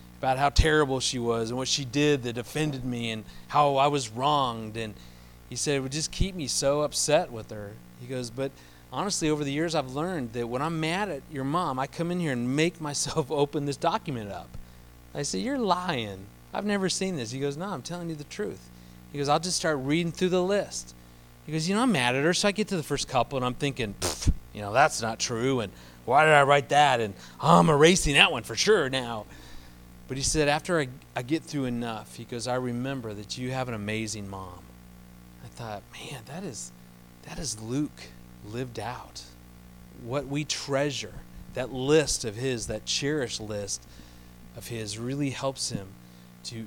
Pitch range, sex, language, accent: 95-150 Hz, male, English, American